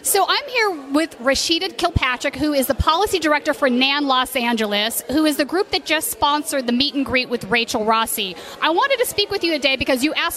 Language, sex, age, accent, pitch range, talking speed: English, female, 40-59, American, 240-305 Hz, 225 wpm